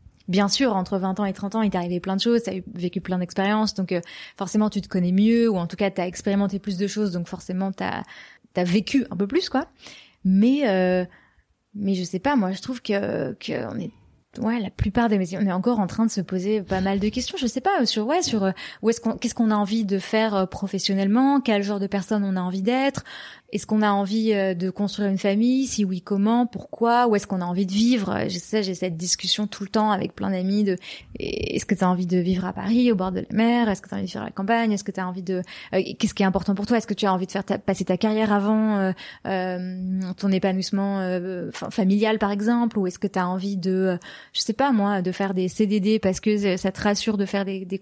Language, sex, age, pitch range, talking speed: French, female, 20-39, 190-215 Hz, 260 wpm